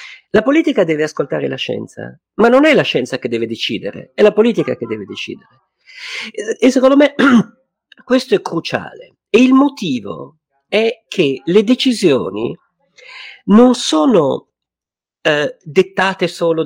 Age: 50-69